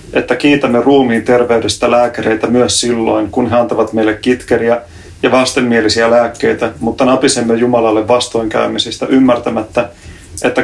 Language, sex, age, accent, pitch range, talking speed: Finnish, male, 30-49, native, 100-120 Hz, 120 wpm